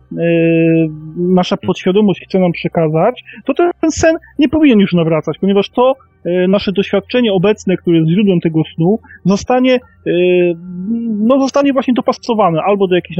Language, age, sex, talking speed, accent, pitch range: Polish, 30-49, male, 130 wpm, native, 180-235 Hz